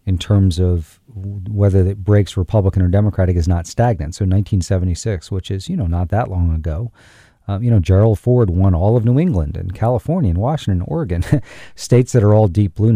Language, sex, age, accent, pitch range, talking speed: English, male, 40-59, American, 95-115 Hz, 200 wpm